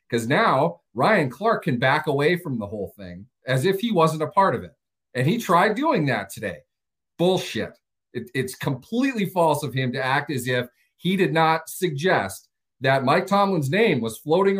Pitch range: 130-200 Hz